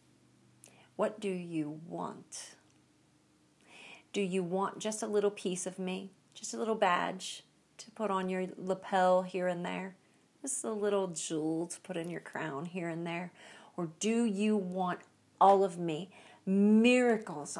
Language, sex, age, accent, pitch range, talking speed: English, female, 40-59, American, 185-230 Hz, 155 wpm